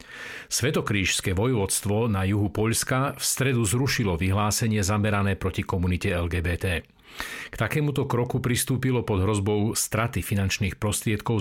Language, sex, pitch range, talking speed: Slovak, male, 95-120 Hz, 115 wpm